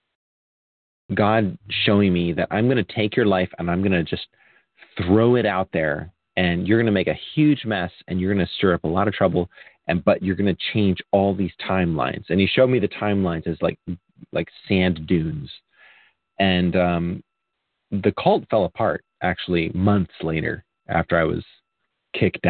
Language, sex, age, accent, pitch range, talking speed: English, male, 30-49, American, 85-105 Hz, 195 wpm